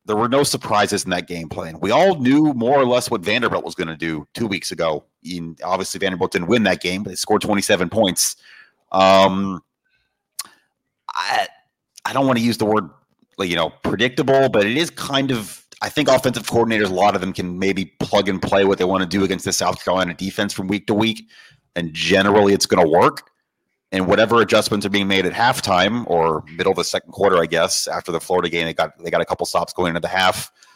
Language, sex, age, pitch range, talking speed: English, male, 30-49, 90-115 Hz, 225 wpm